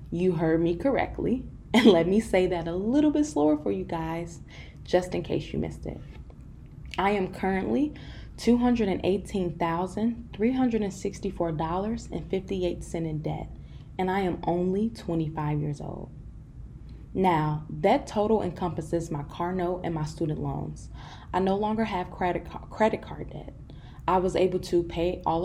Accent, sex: American, female